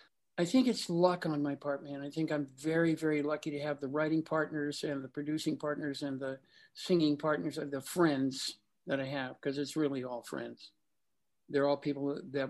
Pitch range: 140-170 Hz